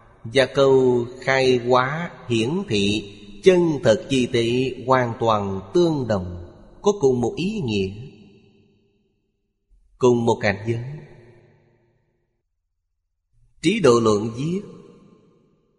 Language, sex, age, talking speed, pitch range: Vietnamese, male, 30-49, 105 wpm, 105-135 Hz